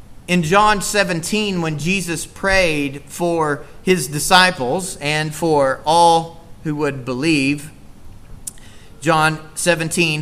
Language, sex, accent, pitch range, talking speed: English, male, American, 145-190 Hz, 100 wpm